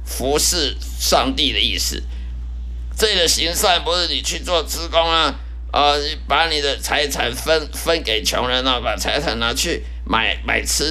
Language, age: Chinese, 50-69